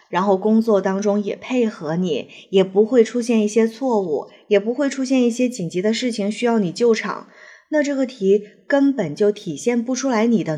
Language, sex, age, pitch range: Chinese, female, 20-39, 190-245 Hz